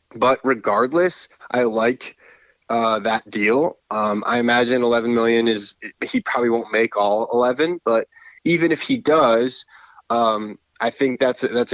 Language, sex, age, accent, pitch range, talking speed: English, male, 20-39, American, 110-125 Hz, 145 wpm